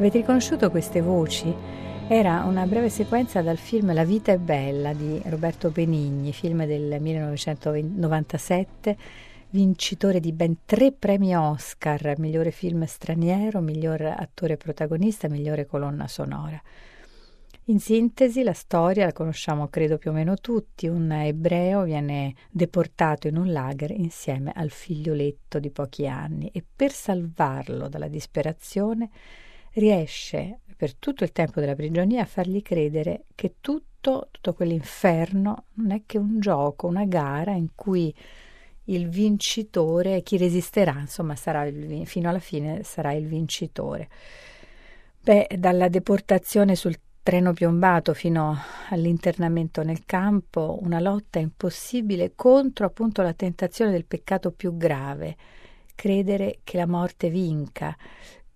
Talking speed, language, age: 130 wpm, Italian, 40-59